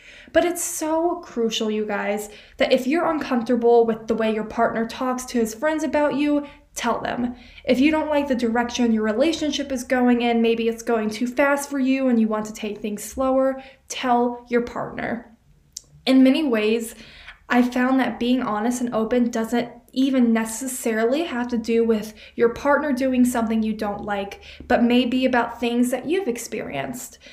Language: English